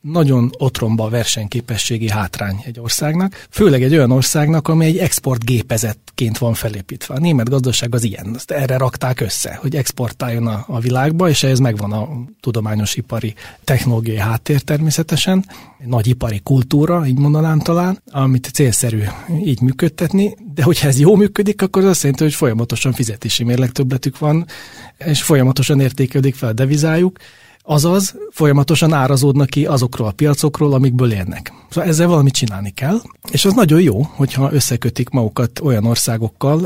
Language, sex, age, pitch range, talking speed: Hungarian, male, 30-49, 115-155 Hz, 150 wpm